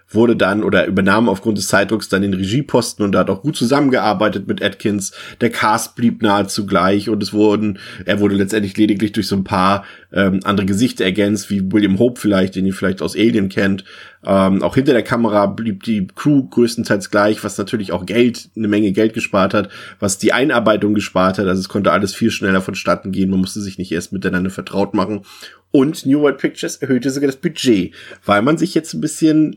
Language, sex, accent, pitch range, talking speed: German, male, German, 95-115 Hz, 205 wpm